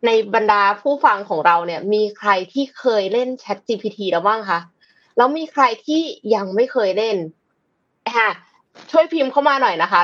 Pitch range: 195-280 Hz